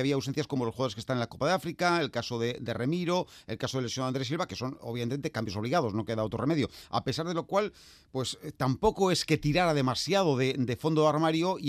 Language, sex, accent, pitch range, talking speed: Spanish, male, Spanish, 115-150 Hz, 255 wpm